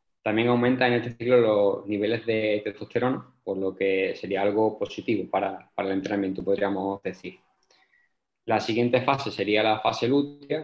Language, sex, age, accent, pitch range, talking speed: Spanish, male, 20-39, Spanish, 105-120 Hz, 160 wpm